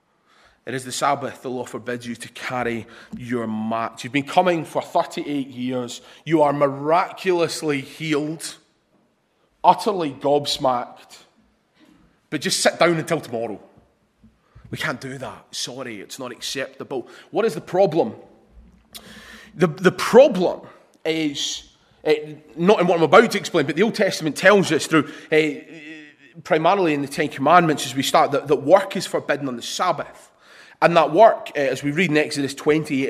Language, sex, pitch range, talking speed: English, male, 135-180 Hz, 160 wpm